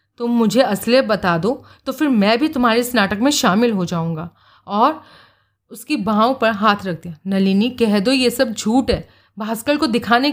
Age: 30-49